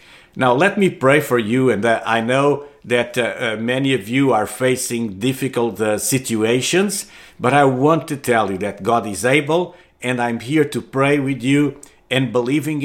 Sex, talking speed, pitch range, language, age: male, 180 wpm, 115-145 Hz, English, 50-69